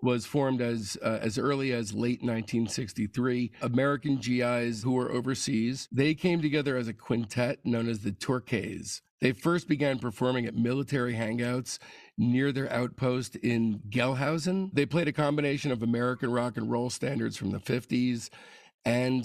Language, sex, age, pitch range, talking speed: English, male, 50-69, 115-135 Hz, 155 wpm